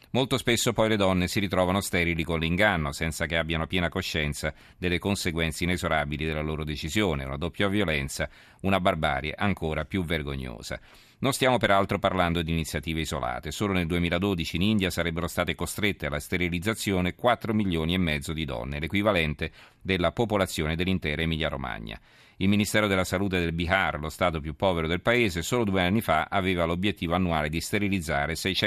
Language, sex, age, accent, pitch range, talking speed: Italian, male, 40-59, native, 80-100 Hz, 165 wpm